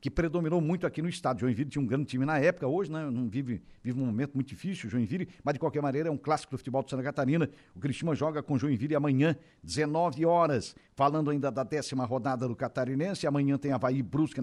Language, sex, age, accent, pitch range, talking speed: Portuguese, male, 60-79, Brazilian, 130-160 Hz, 225 wpm